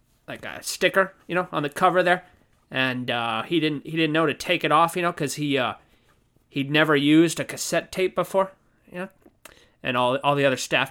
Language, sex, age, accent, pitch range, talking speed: English, male, 20-39, American, 130-170 Hz, 225 wpm